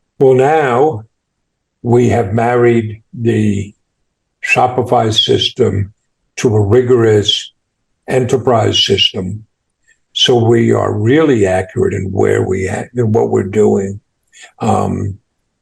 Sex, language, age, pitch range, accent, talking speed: male, English, 50-69, 110-130 Hz, American, 105 wpm